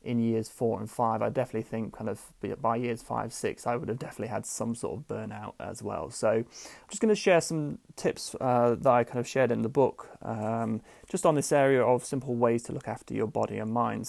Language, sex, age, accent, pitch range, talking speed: English, male, 30-49, British, 115-135 Hz, 245 wpm